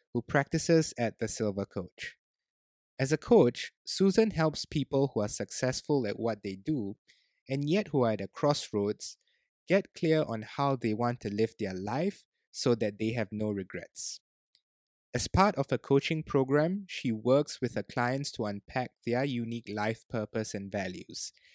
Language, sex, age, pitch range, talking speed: English, male, 20-39, 115-155 Hz, 170 wpm